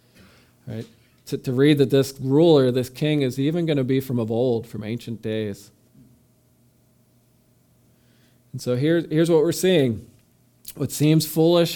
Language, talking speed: English, 155 wpm